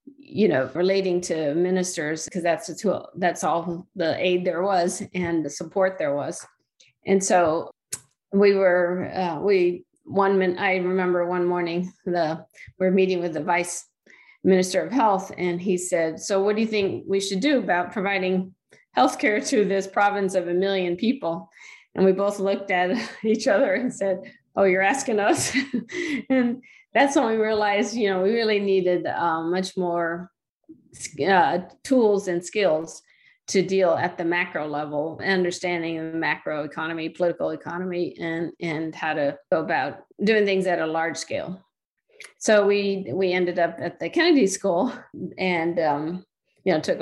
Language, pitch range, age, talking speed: English, 170-200 Hz, 40-59, 165 wpm